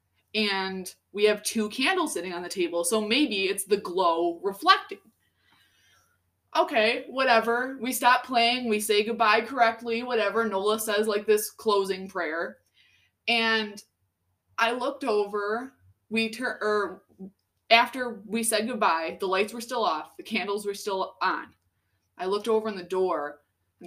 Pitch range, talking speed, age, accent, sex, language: 170-220 Hz, 150 wpm, 20-39, American, female, English